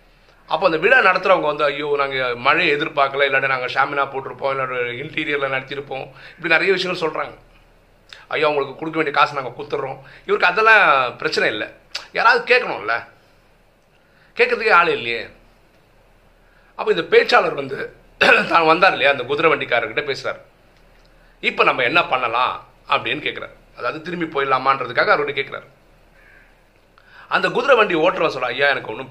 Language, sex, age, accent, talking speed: Tamil, male, 30-49, native, 140 wpm